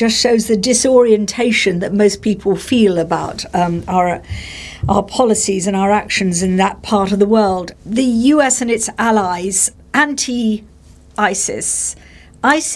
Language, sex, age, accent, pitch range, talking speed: English, female, 50-69, British, 200-240 Hz, 135 wpm